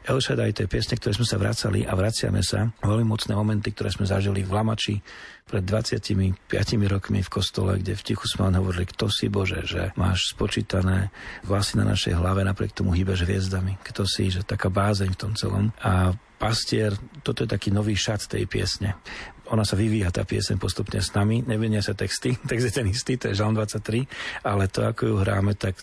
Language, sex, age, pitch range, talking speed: Slovak, male, 40-59, 95-110 Hz, 195 wpm